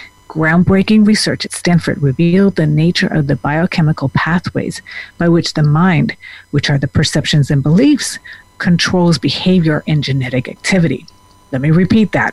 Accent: American